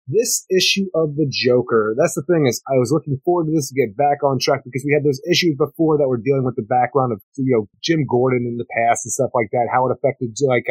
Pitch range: 130-180 Hz